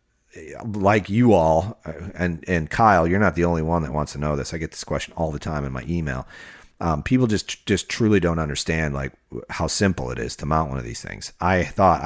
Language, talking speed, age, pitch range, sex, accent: English, 230 wpm, 40-59, 75-90 Hz, male, American